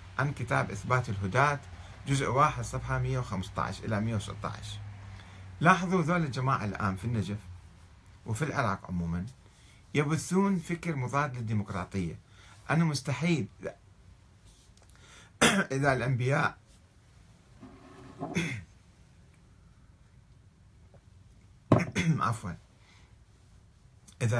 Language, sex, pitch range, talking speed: Arabic, male, 100-145 Hz, 70 wpm